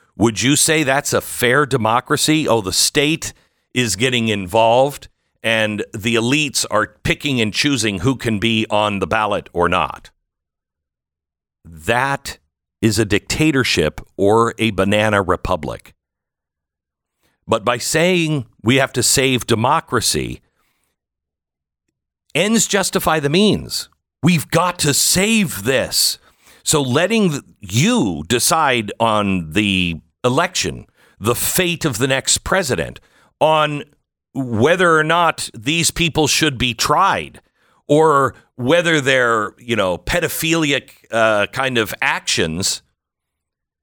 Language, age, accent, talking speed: English, 50-69, American, 115 wpm